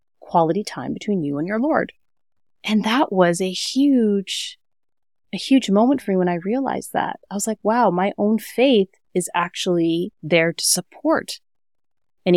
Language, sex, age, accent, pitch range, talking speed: English, female, 30-49, American, 165-225 Hz, 165 wpm